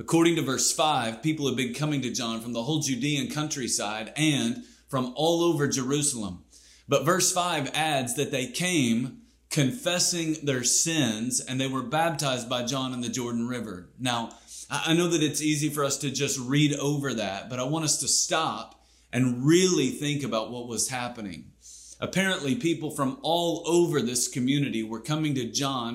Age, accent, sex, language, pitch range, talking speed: 30-49, American, male, English, 115-155 Hz, 180 wpm